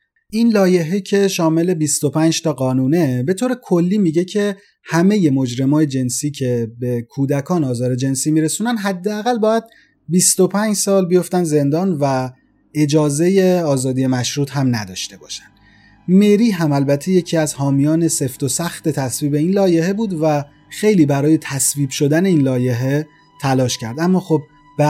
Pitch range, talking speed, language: 125-185 Hz, 140 wpm, Persian